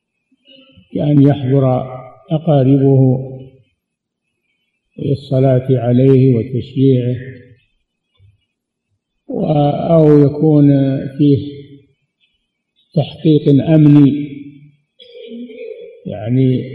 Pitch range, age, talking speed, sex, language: 125-160 Hz, 50-69, 45 wpm, male, Arabic